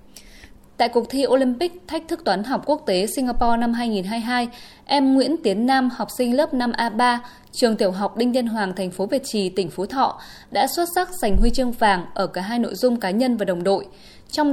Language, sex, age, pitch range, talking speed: Vietnamese, female, 10-29, 205-265 Hz, 215 wpm